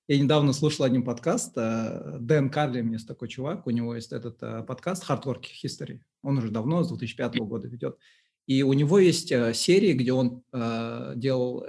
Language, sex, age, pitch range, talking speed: Russian, male, 20-39, 125-155 Hz, 170 wpm